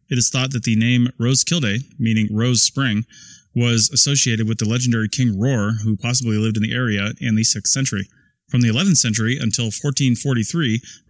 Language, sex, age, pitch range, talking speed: English, male, 20-39, 110-135 Hz, 180 wpm